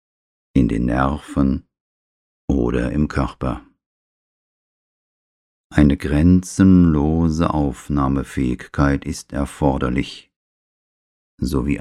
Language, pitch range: German, 65-85 Hz